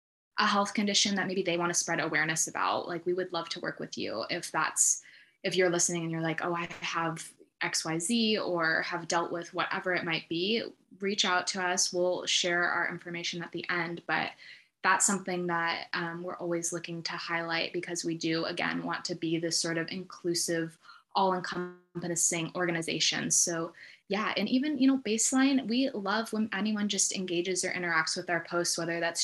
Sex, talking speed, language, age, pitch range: female, 190 wpm, English, 20-39, 170-190 Hz